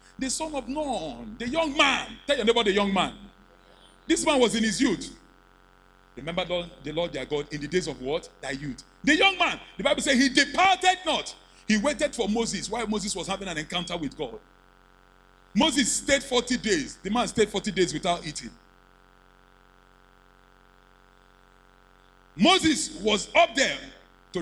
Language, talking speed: English, 170 wpm